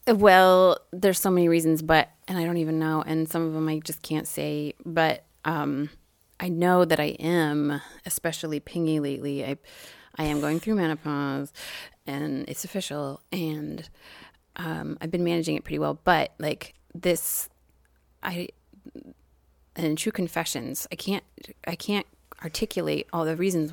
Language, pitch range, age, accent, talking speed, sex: English, 150-180 Hz, 30-49, American, 155 wpm, female